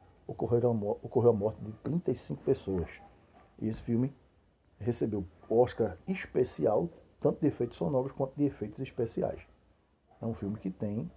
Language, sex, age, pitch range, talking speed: Portuguese, male, 60-79, 95-125 Hz, 135 wpm